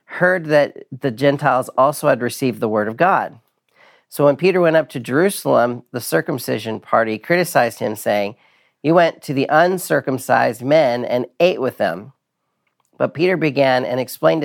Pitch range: 125-165 Hz